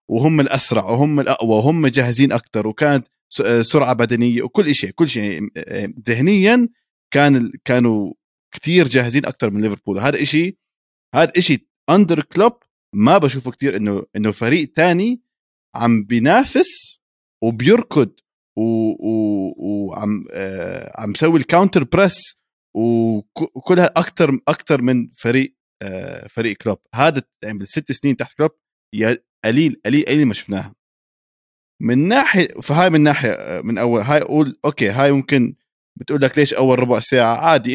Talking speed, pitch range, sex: 130 wpm, 110-150 Hz, male